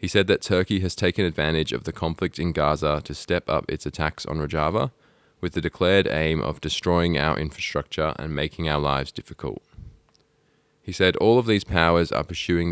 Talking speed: 190 wpm